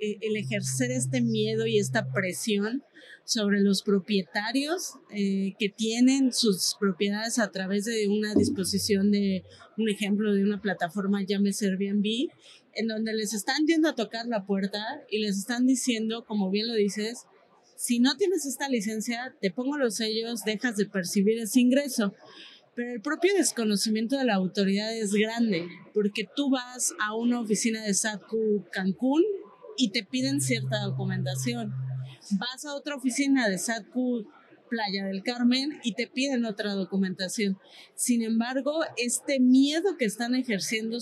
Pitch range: 200-250 Hz